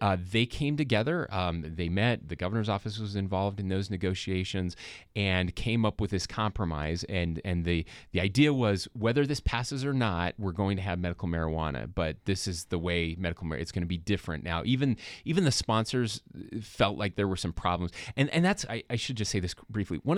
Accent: American